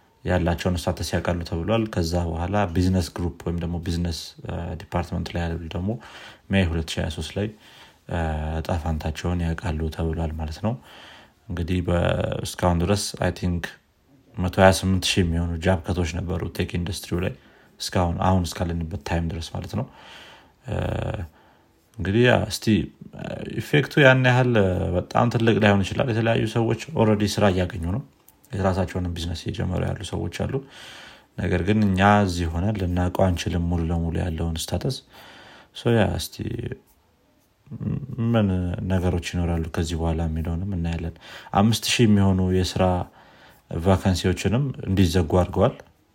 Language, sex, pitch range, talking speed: Amharic, male, 85-110 Hz, 115 wpm